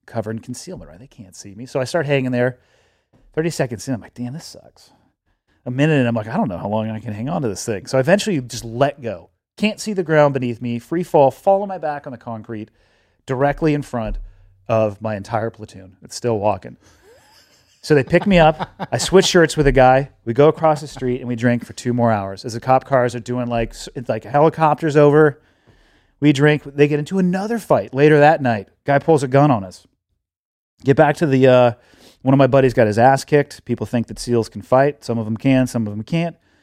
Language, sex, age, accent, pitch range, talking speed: English, male, 30-49, American, 115-150 Hz, 240 wpm